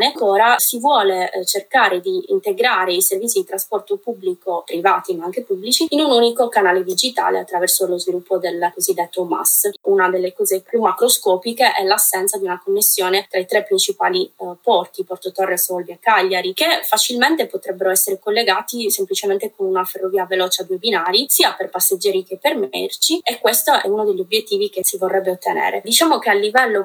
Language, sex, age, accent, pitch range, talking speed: Italian, female, 20-39, native, 190-275 Hz, 180 wpm